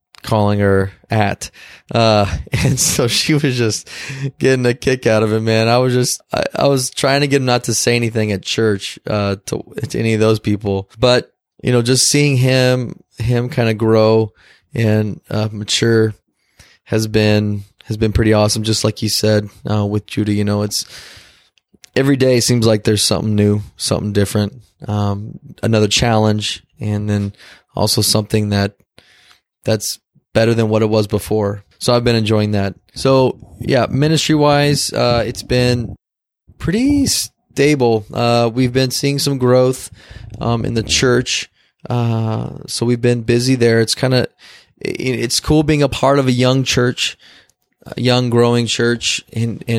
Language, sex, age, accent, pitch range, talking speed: English, male, 20-39, American, 105-125 Hz, 170 wpm